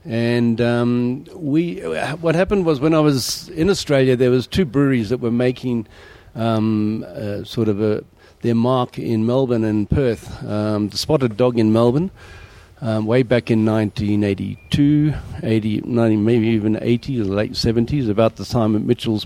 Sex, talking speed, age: male, 160 wpm, 50-69